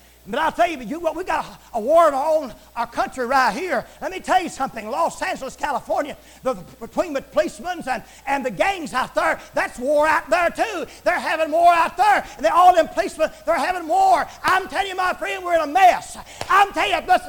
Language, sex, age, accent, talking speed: English, male, 40-59, American, 220 wpm